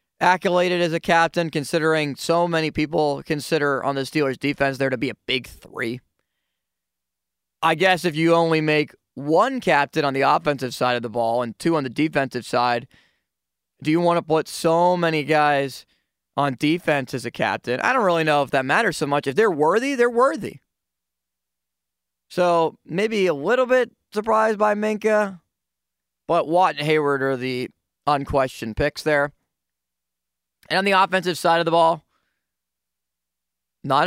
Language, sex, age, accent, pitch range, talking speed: English, male, 20-39, American, 120-175 Hz, 165 wpm